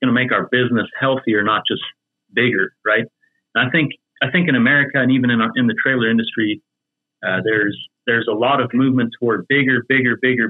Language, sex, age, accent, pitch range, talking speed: English, male, 30-49, American, 115-145 Hz, 205 wpm